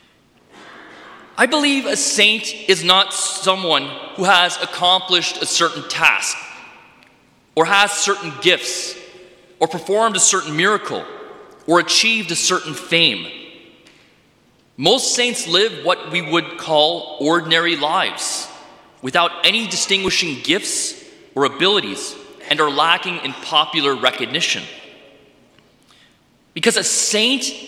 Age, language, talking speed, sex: 30-49, English, 110 wpm, male